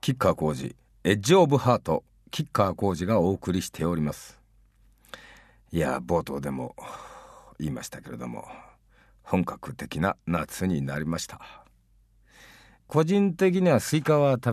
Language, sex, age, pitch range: Japanese, male, 50-69, 80-120 Hz